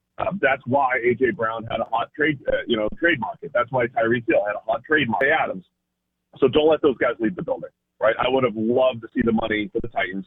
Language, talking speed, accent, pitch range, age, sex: English, 250 wpm, American, 100-130 Hz, 40-59, male